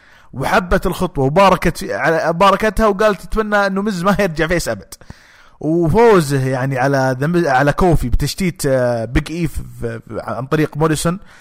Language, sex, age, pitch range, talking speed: English, male, 30-49, 130-175 Hz, 120 wpm